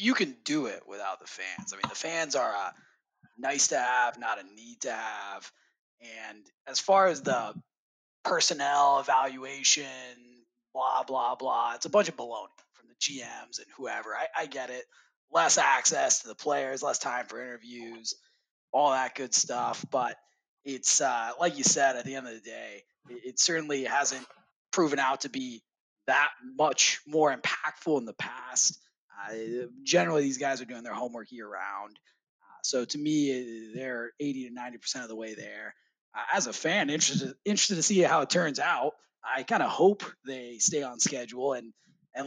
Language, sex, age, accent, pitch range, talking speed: English, male, 20-39, American, 125-160 Hz, 185 wpm